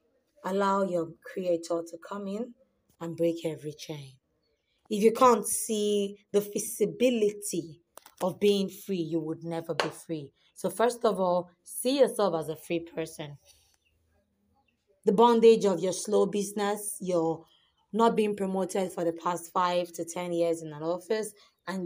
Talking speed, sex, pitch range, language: 150 wpm, female, 165-210 Hz, English